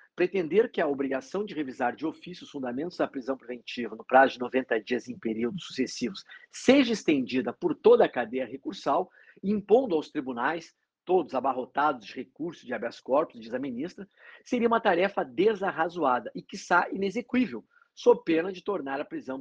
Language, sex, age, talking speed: Portuguese, male, 50-69, 165 wpm